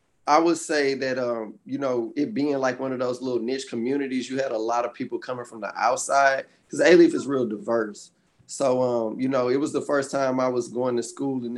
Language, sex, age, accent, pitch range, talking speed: English, male, 20-39, American, 115-135 Hz, 240 wpm